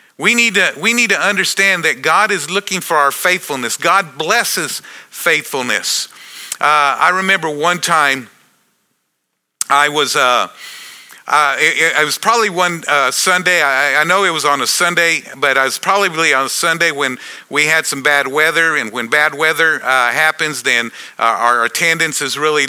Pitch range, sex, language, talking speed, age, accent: 145-180 Hz, male, English, 175 wpm, 50-69, American